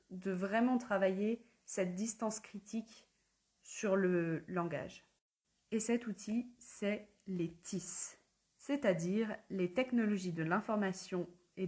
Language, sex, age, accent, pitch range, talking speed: French, female, 20-39, French, 180-215 Hz, 110 wpm